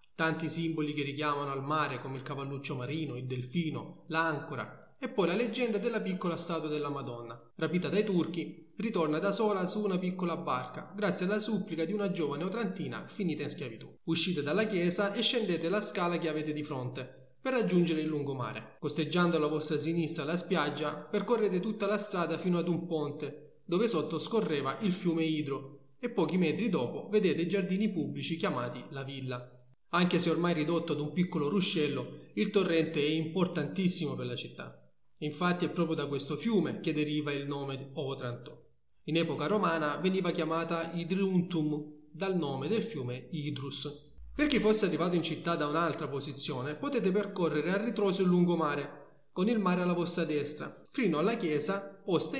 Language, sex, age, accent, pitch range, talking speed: Italian, male, 30-49, native, 150-190 Hz, 170 wpm